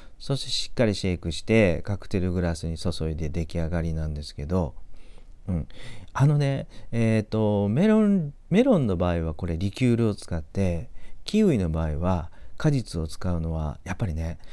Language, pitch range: Japanese, 85-110 Hz